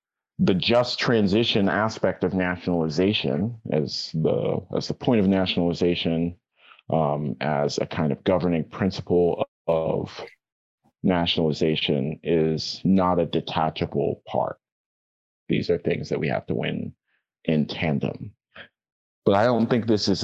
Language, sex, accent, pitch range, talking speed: English, male, American, 85-100 Hz, 130 wpm